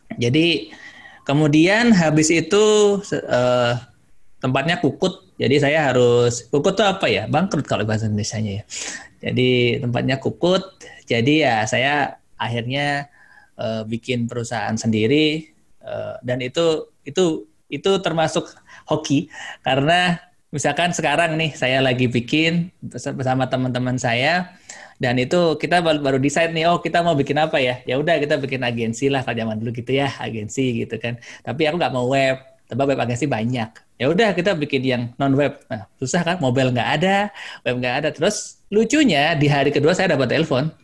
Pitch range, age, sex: 125-165 Hz, 20-39, male